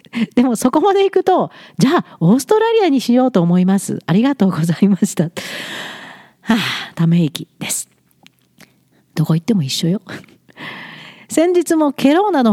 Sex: female